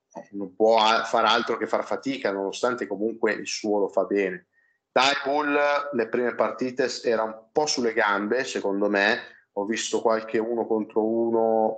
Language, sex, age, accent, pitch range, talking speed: Italian, male, 30-49, native, 100-120 Hz, 165 wpm